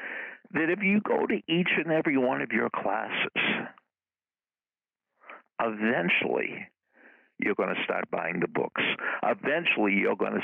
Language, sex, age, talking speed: English, male, 60-79, 140 wpm